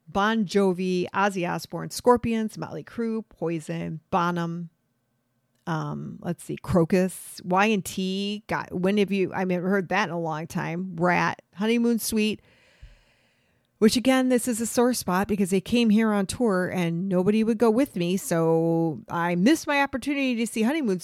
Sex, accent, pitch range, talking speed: female, American, 165-230 Hz, 165 wpm